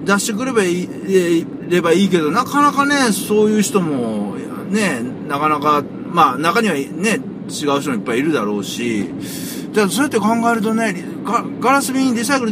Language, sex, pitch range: Japanese, male, 155-230 Hz